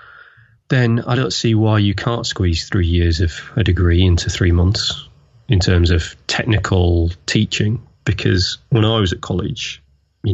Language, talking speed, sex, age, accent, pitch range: English, 165 wpm, male, 30-49, British, 90-110 Hz